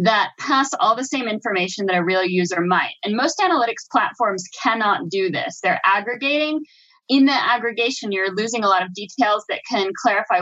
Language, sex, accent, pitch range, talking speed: English, female, American, 195-245 Hz, 185 wpm